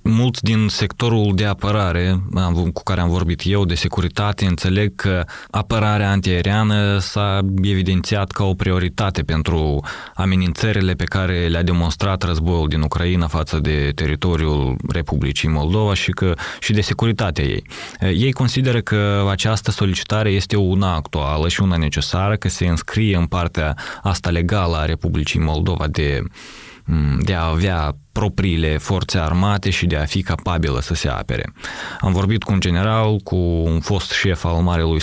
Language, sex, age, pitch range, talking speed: Romanian, male, 20-39, 85-100 Hz, 150 wpm